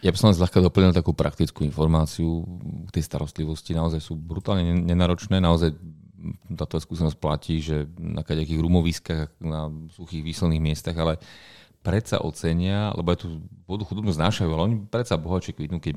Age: 40-59